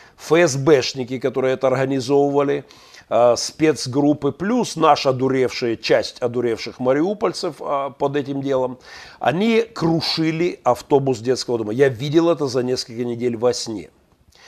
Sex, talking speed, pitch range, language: male, 110 wpm, 125-160 Hz, Russian